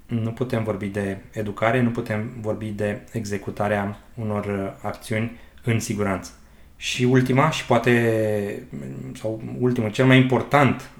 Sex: male